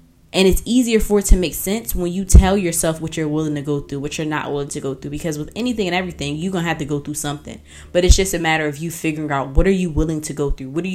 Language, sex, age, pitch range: English, female, 10-29, 150-190 Hz